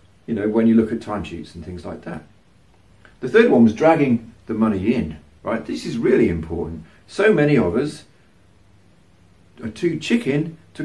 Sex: male